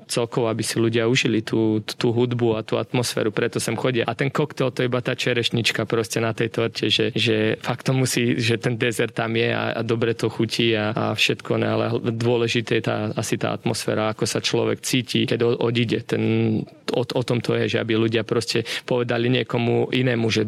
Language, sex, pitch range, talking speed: Slovak, male, 110-120 Hz, 205 wpm